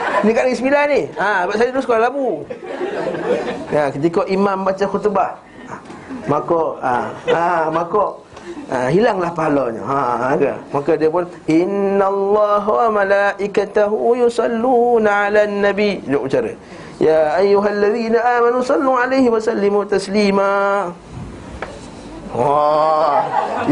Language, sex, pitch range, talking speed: Malay, male, 160-210 Hz, 115 wpm